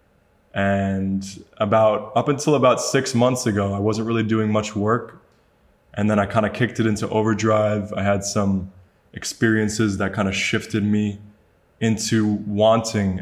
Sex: male